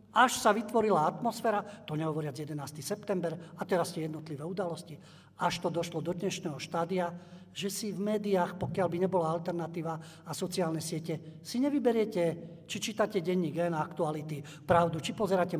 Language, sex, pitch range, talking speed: Slovak, male, 160-200 Hz, 155 wpm